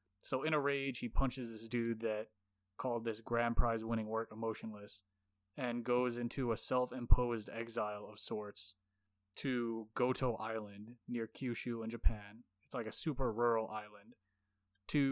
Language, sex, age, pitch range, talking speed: English, male, 20-39, 105-125 Hz, 145 wpm